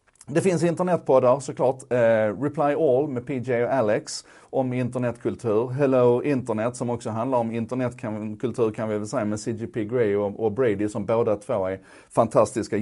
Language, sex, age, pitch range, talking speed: Swedish, male, 30-49, 100-125 Hz, 175 wpm